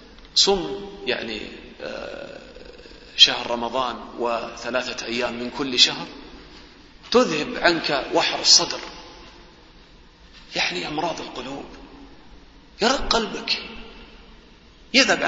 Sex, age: male, 40-59